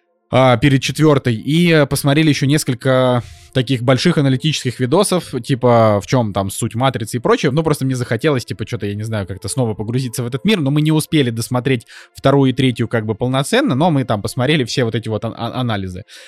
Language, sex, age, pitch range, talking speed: Russian, male, 20-39, 120-150 Hz, 205 wpm